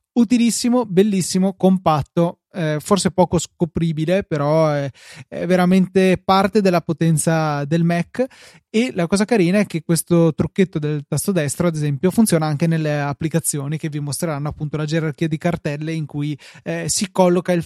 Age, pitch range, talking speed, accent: 20-39, 155-195 Hz, 160 wpm, native